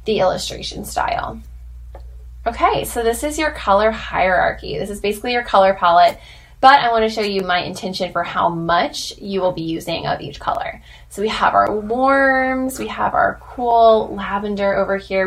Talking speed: 175 wpm